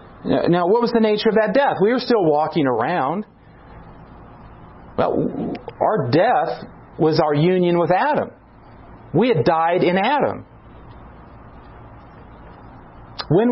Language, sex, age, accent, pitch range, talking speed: English, male, 40-59, American, 185-265 Hz, 120 wpm